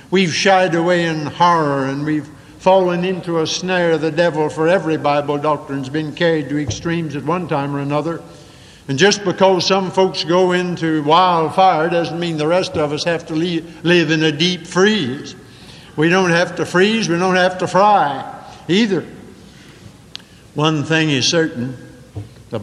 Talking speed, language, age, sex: 170 wpm, English, 60-79, male